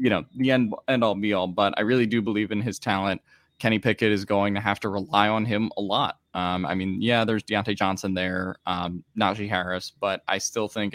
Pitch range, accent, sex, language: 95-110 Hz, American, male, English